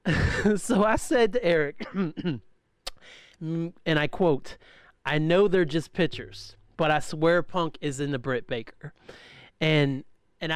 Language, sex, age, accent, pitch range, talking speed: English, male, 30-49, American, 135-185 Hz, 135 wpm